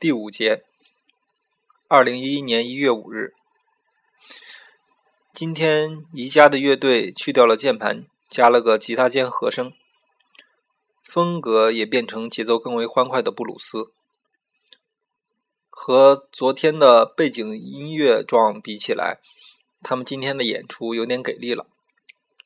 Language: Chinese